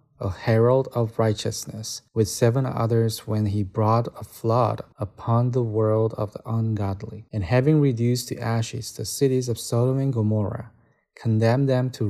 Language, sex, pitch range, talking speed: English, male, 105-125 Hz, 160 wpm